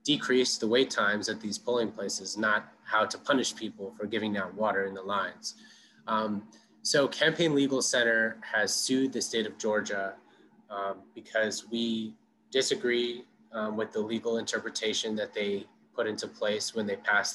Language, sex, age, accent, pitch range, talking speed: English, male, 20-39, American, 105-125 Hz, 165 wpm